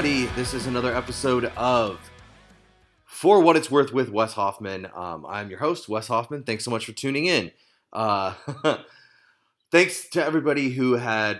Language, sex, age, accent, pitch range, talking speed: English, male, 30-49, American, 110-125 Hz, 160 wpm